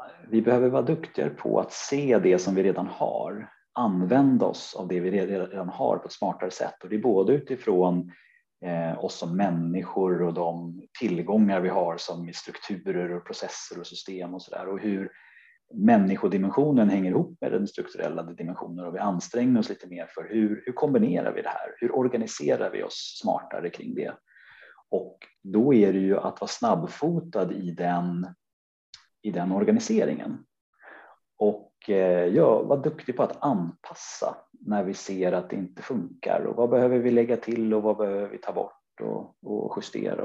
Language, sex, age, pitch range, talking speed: Swedish, male, 30-49, 90-115 Hz, 170 wpm